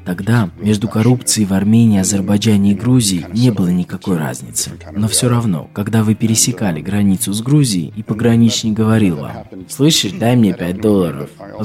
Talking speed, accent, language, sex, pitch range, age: 160 wpm, native, Russian, male, 90-115 Hz, 20-39